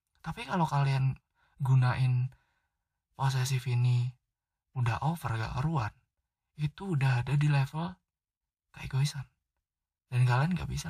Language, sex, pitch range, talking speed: Indonesian, male, 120-145 Hz, 115 wpm